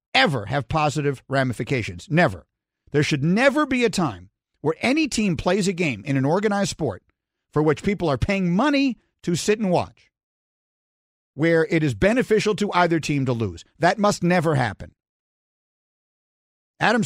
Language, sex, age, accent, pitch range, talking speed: English, male, 50-69, American, 135-195 Hz, 160 wpm